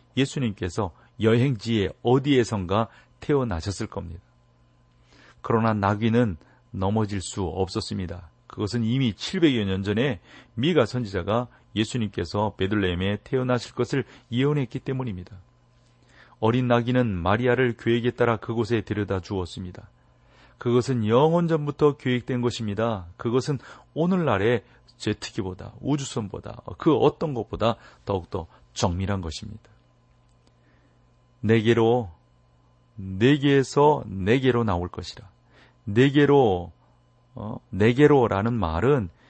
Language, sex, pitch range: Korean, male, 95-125 Hz